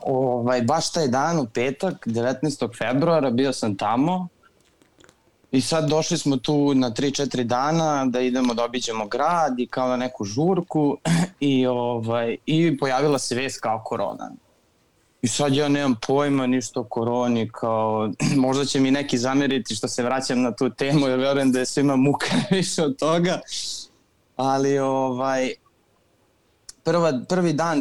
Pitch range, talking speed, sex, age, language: 125-140 Hz, 150 wpm, male, 20-39, Croatian